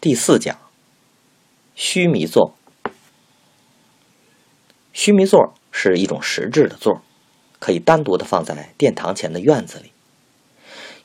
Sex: male